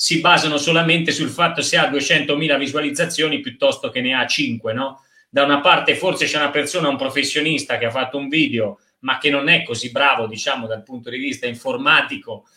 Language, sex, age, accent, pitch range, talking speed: Italian, male, 30-49, native, 125-165 Hz, 195 wpm